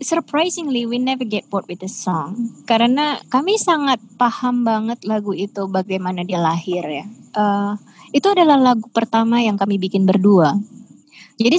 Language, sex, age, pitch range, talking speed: English, female, 20-39, 190-255 Hz, 150 wpm